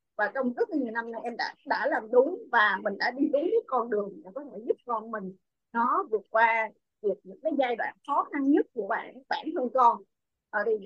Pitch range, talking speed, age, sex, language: 240-350 Hz, 225 wpm, 20-39, female, Vietnamese